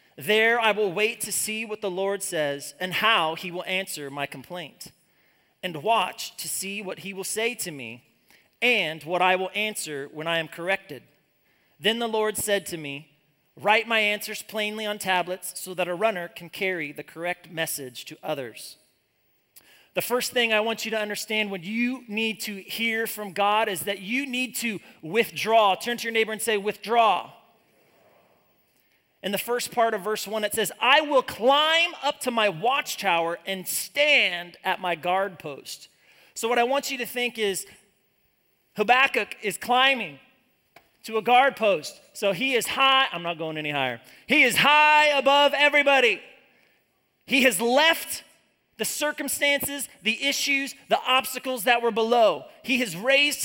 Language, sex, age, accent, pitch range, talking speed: English, male, 30-49, American, 185-255 Hz, 170 wpm